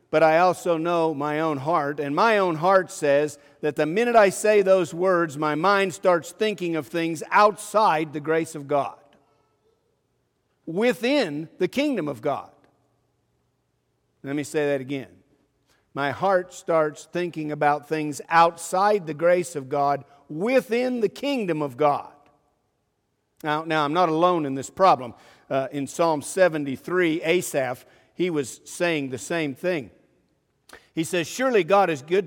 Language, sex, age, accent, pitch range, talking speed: English, male, 50-69, American, 155-225 Hz, 150 wpm